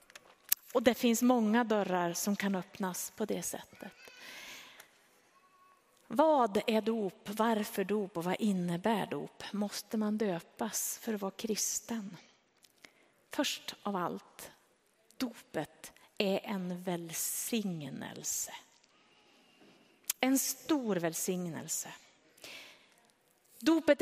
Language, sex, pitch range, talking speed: Swedish, female, 200-260 Hz, 95 wpm